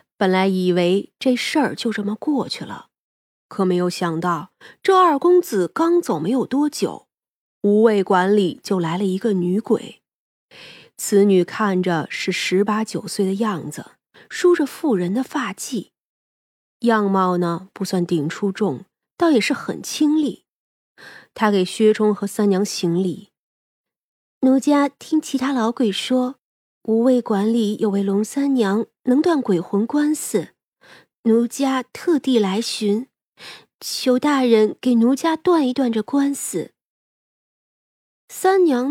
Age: 20-39